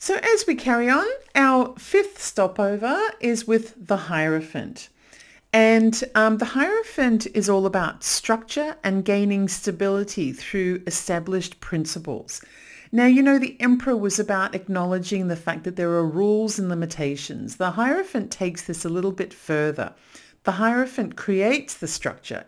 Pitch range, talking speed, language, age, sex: 170-225 Hz, 145 wpm, English, 50-69, female